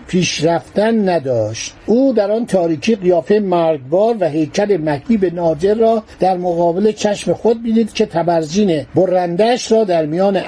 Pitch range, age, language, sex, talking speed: 170-225 Hz, 60-79, Persian, male, 135 wpm